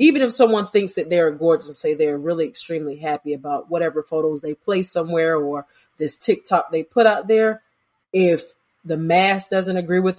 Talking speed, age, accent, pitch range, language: 190 wpm, 30-49, American, 155-195 Hz, English